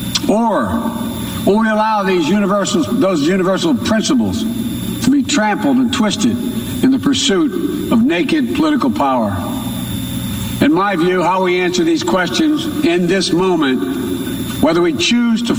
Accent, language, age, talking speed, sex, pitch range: American, English, 60-79, 130 wpm, male, 175-240 Hz